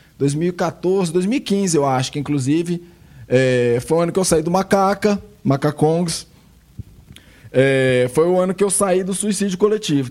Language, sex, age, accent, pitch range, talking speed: Portuguese, male, 20-39, Brazilian, 145-195 Hz, 155 wpm